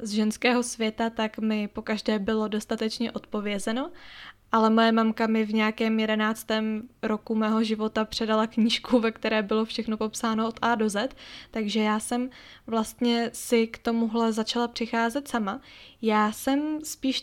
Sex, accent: female, native